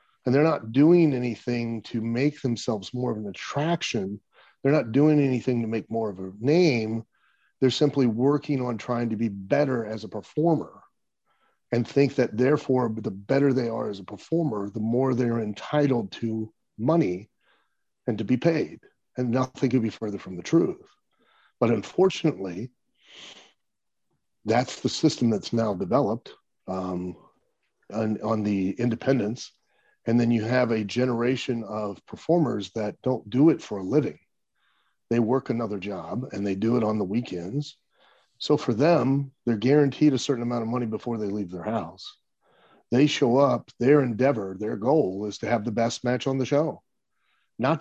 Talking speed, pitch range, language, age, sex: 165 wpm, 110-140 Hz, English, 40-59, male